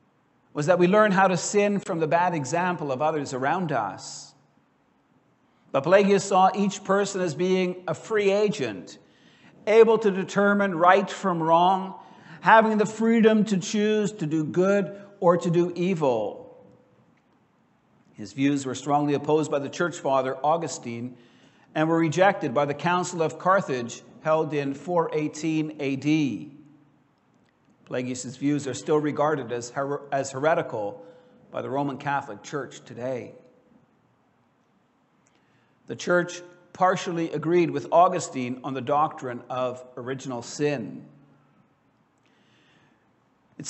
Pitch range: 145-190 Hz